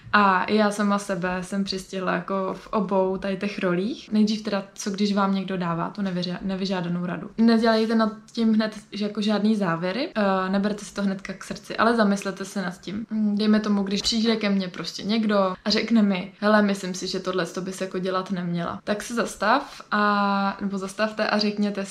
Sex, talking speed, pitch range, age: female, 195 wpm, 195-215 Hz, 20-39